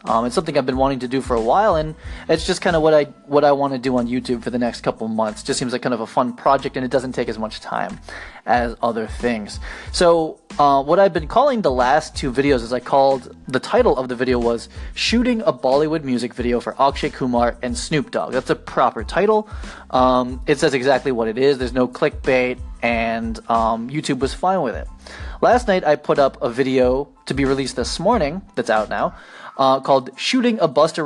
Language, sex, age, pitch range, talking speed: English, male, 20-39, 125-150 Hz, 230 wpm